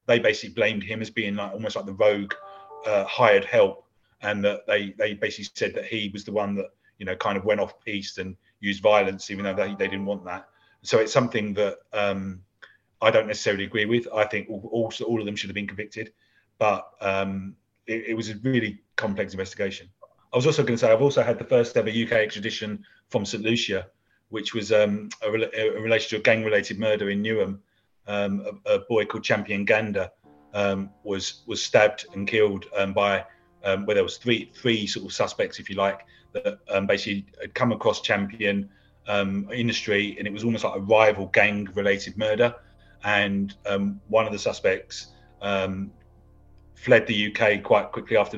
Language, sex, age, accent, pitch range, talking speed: English, male, 30-49, British, 100-115 Hz, 200 wpm